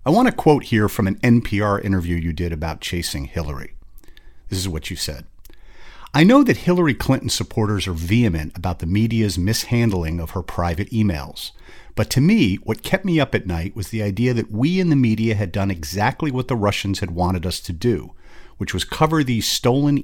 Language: English